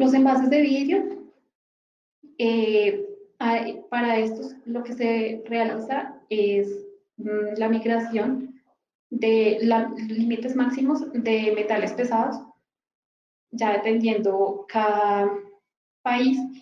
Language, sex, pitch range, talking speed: Portuguese, female, 210-255 Hz, 95 wpm